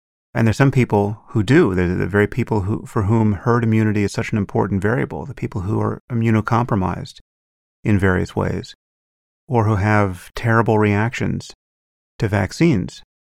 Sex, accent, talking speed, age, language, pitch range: male, American, 160 wpm, 30-49, English, 90-115 Hz